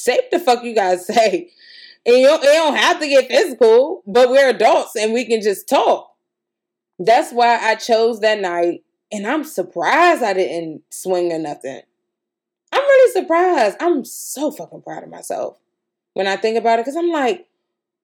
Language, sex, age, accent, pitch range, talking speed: English, female, 20-39, American, 185-260 Hz, 180 wpm